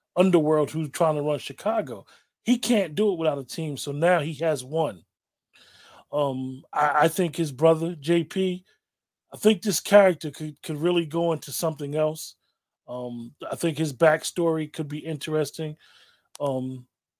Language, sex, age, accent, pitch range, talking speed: English, male, 30-49, American, 150-195 Hz, 155 wpm